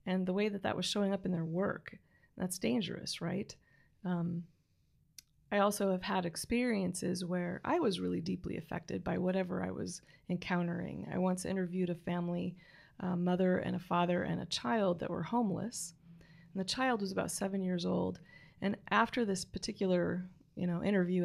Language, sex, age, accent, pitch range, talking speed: English, female, 30-49, American, 175-200 Hz, 175 wpm